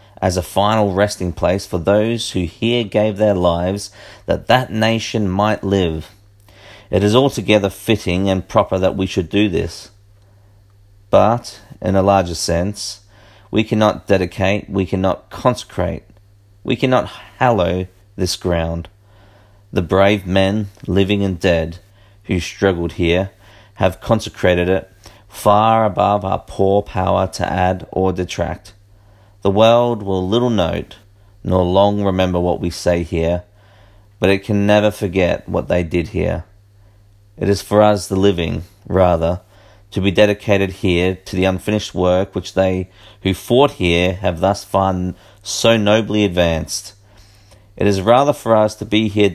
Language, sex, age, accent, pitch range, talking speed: English, male, 40-59, Australian, 95-105 Hz, 145 wpm